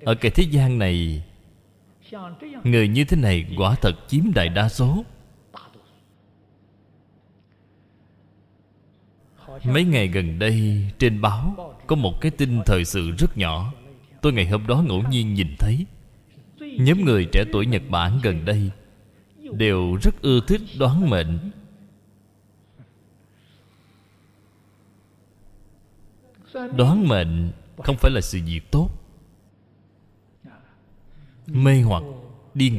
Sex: male